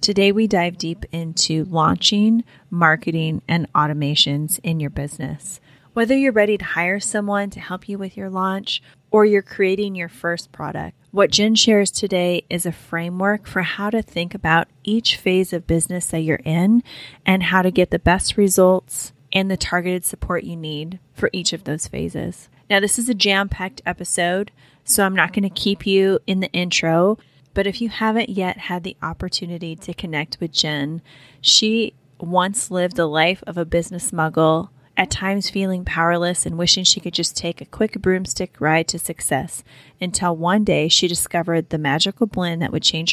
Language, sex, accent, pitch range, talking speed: English, female, American, 160-195 Hz, 185 wpm